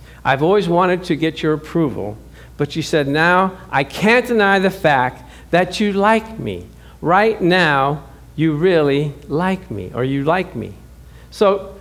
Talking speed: 160 wpm